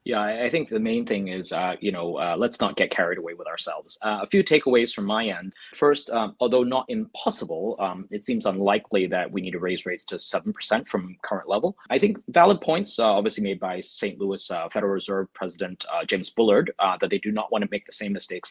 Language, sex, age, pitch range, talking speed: English, male, 20-39, 95-125 Hz, 235 wpm